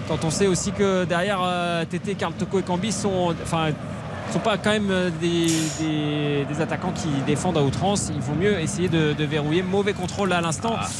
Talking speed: 215 wpm